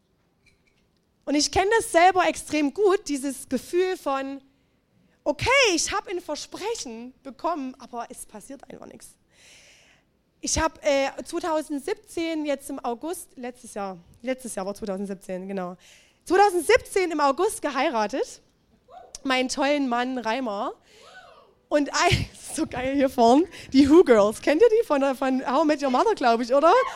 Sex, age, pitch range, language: female, 20-39, 255-325 Hz, German